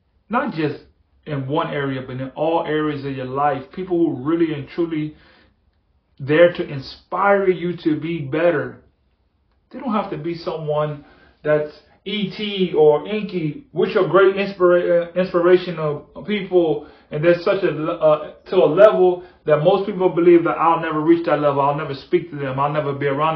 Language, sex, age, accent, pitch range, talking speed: English, male, 30-49, American, 150-195 Hz, 175 wpm